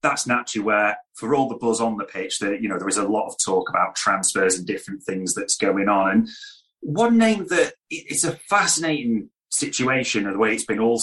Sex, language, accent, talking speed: male, English, British, 225 wpm